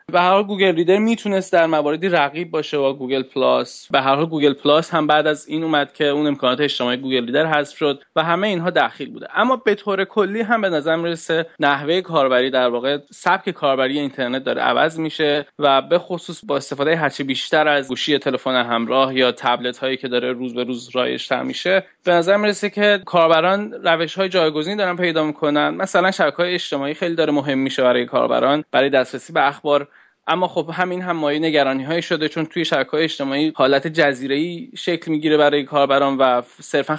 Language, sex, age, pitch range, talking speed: Persian, male, 20-39, 135-165 Hz, 195 wpm